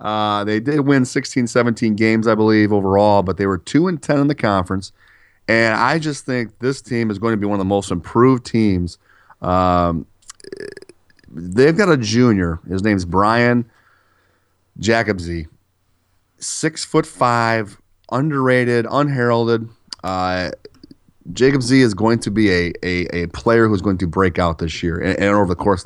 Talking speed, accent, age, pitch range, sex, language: 170 wpm, American, 30-49, 95-115 Hz, male, English